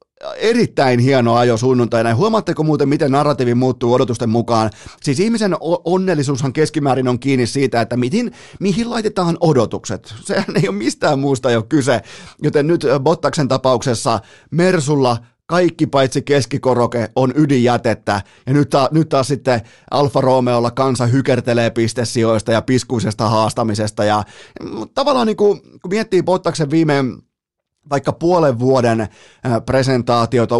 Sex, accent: male, native